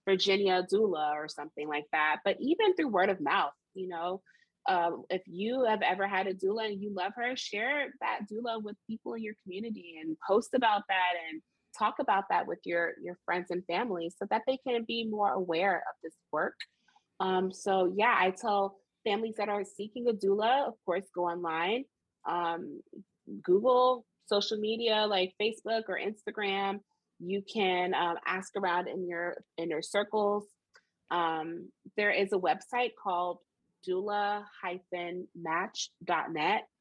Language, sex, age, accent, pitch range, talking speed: English, female, 20-39, American, 170-215 Hz, 160 wpm